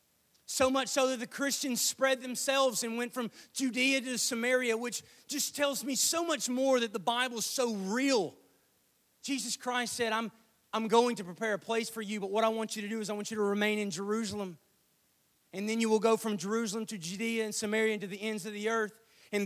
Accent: American